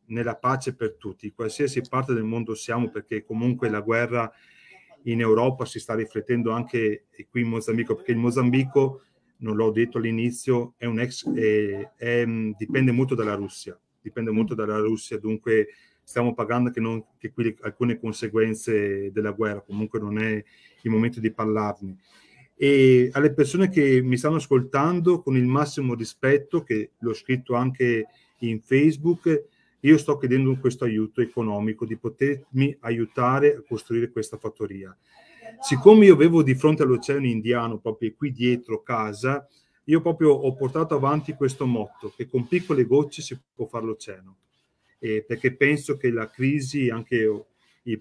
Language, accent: Italian, native